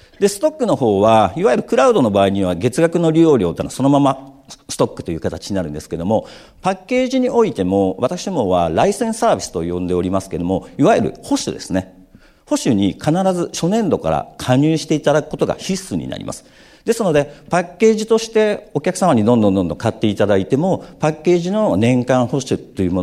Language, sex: Japanese, male